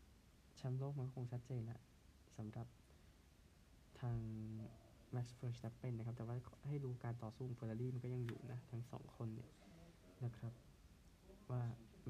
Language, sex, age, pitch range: Thai, male, 20-39, 110-125 Hz